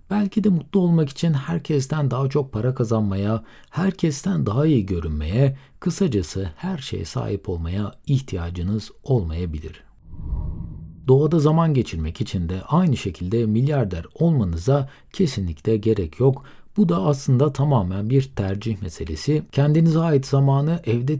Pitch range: 100-150 Hz